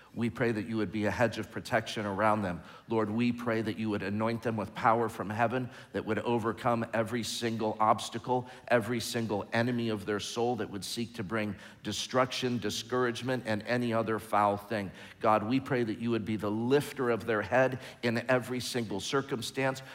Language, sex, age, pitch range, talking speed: English, male, 50-69, 110-130 Hz, 195 wpm